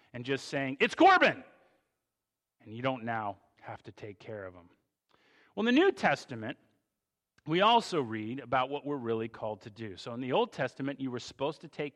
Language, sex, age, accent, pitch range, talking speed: English, male, 40-59, American, 125-170 Hz, 200 wpm